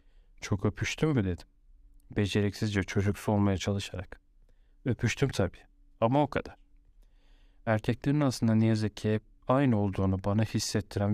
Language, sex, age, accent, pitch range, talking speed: Turkish, male, 40-59, native, 100-115 Hz, 120 wpm